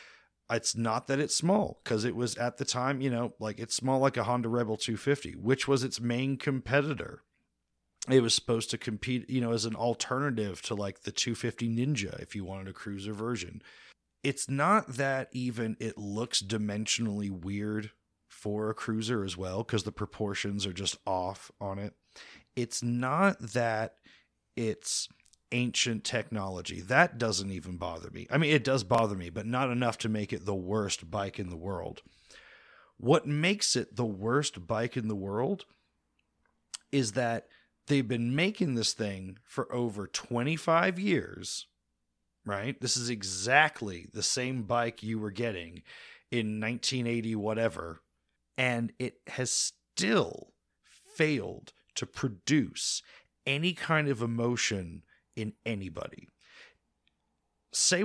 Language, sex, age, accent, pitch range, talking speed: English, male, 30-49, American, 105-130 Hz, 150 wpm